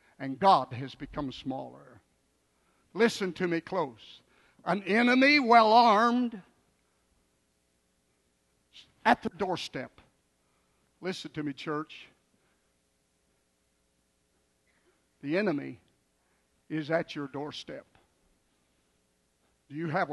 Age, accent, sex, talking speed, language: 60-79, American, male, 85 wpm, English